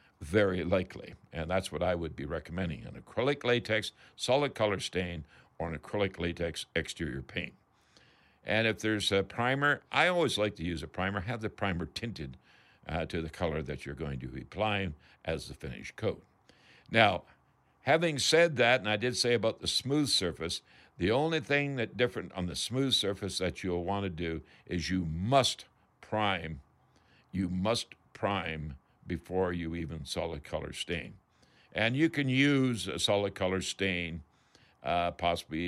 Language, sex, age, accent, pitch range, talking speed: English, male, 60-79, American, 85-110 Hz, 170 wpm